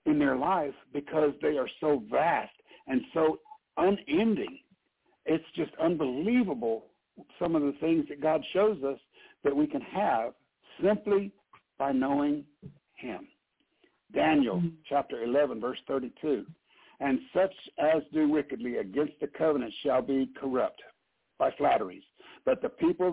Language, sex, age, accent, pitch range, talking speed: English, male, 60-79, American, 145-215 Hz, 130 wpm